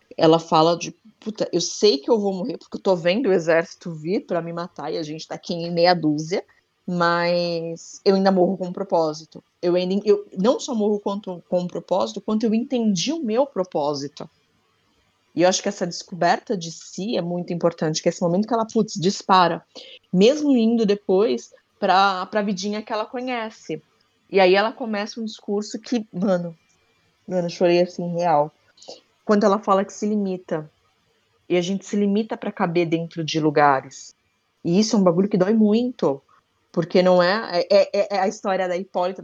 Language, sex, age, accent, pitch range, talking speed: Portuguese, female, 20-39, Brazilian, 175-220 Hz, 190 wpm